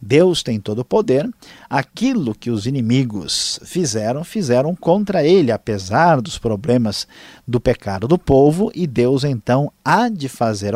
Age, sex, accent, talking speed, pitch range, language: 50-69, male, Brazilian, 145 wpm, 110-155 Hz, Portuguese